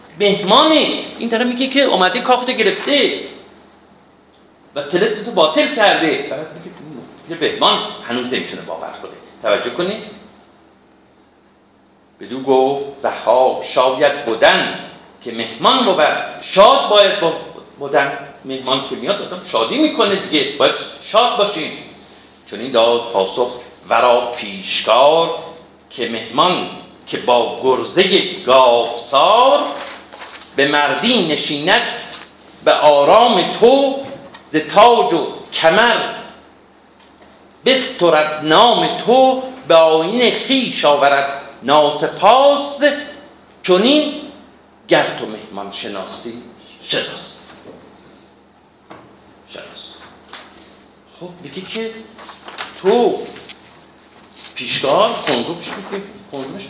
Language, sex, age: Persian, male, 50-69